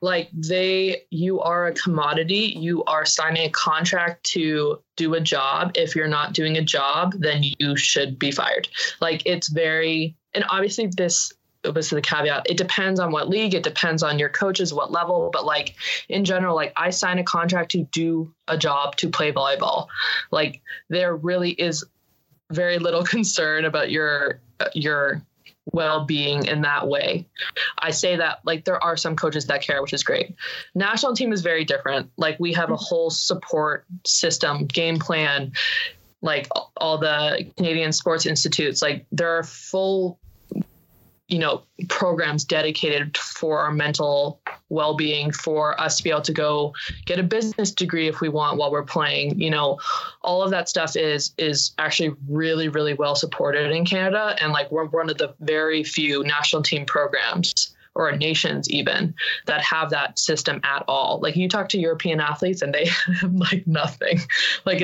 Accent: American